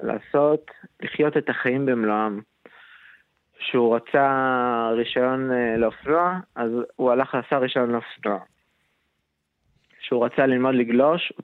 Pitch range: 115-140 Hz